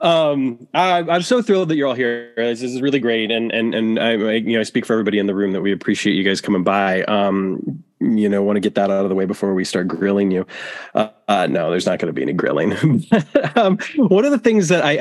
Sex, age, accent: male, 20-39, American